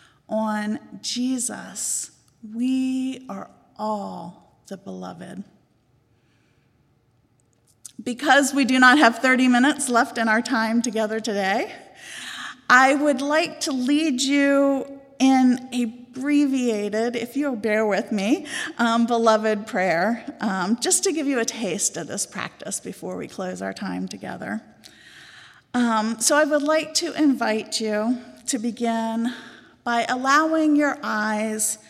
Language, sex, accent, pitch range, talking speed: English, female, American, 200-265 Hz, 125 wpm